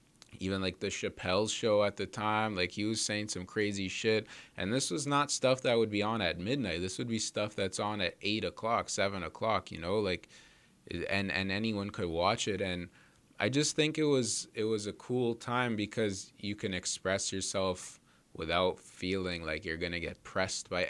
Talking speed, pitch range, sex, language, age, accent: 205 wpm, 95-110 Hz, male, English, 20-39, American